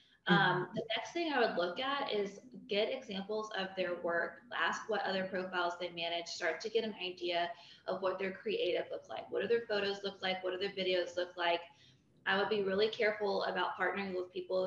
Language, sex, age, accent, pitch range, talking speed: English, female, 20-39, American, 180-215 Hz, 215 wpm